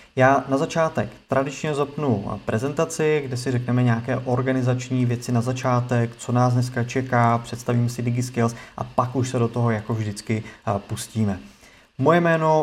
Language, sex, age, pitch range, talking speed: Czech, male, 30-49, 115-135 Hz, 150 wpm